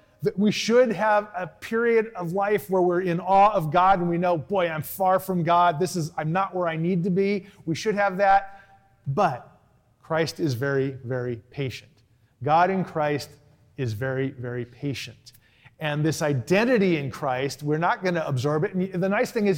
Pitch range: 145-190 Hz